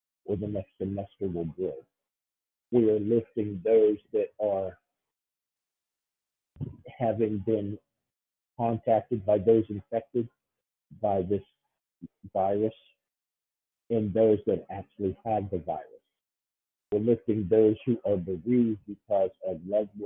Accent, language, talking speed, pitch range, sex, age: American, English, 110 wpm, 95-110 Hz, male, 50-69